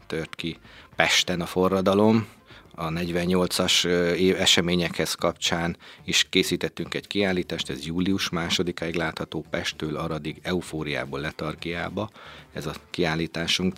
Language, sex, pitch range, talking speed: Hungarian, male, 80-95 Hz, 110 wpm